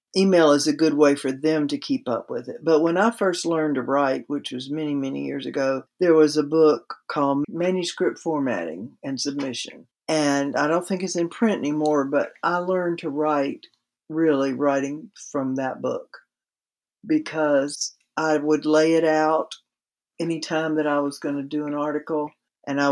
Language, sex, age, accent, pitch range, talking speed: English, female, 60-79, American, 140-160 Hz, 185 wpm